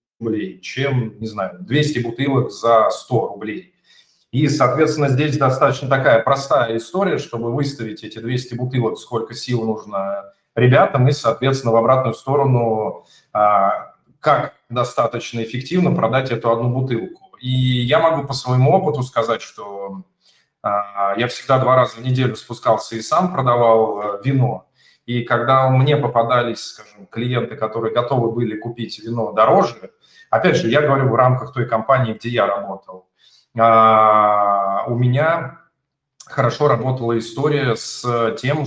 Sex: male